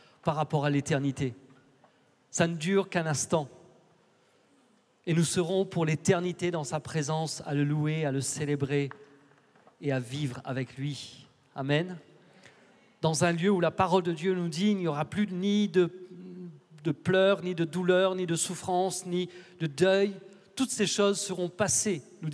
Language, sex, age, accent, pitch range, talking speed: French, male, 40-59, French, 150-190 Hz, 165 wpm